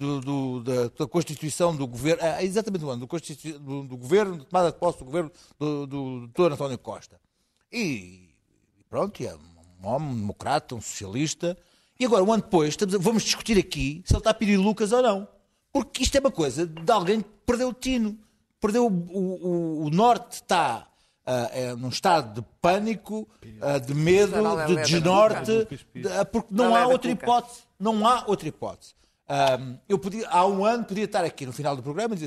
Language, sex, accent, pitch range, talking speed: Portuguese, male, Portuguese, 145-220 Hz, 190 wpm